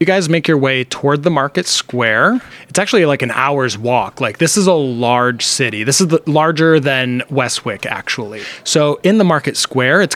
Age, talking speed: 20-39, 195 wpm